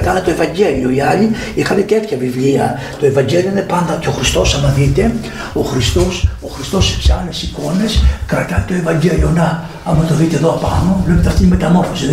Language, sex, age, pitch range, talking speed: Greek, male, 60-79, 150-220 Hz, 190 wpm